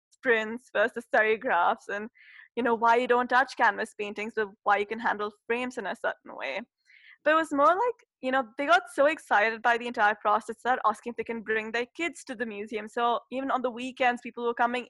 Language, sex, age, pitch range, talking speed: English, female, 10-29, 220-250 Hz, 225 wpm